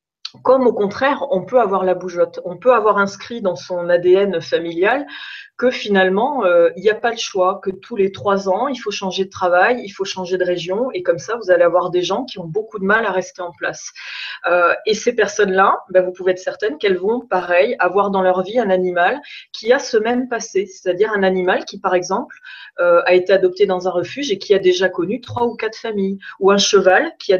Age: 20-39